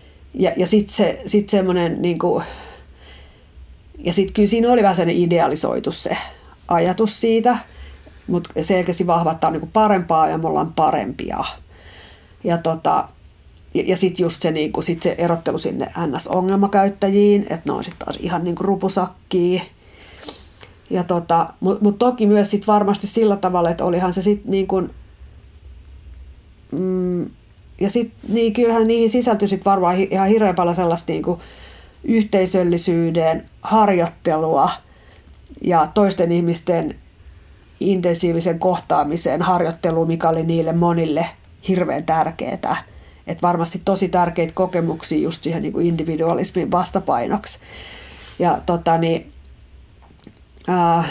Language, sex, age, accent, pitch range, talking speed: Finnish, female, 40-59, native, 160-195 Hz, 115 wpm